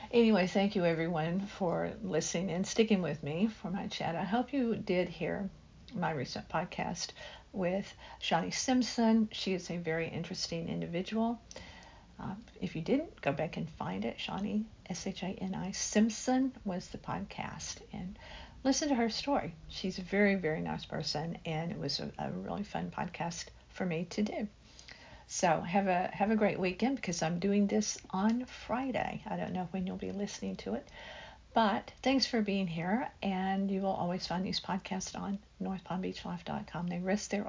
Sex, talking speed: female, 170 wpm